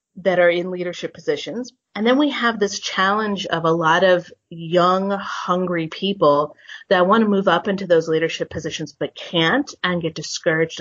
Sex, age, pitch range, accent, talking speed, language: female, 30-49, 165-205 Hz, American, 180 wpm, English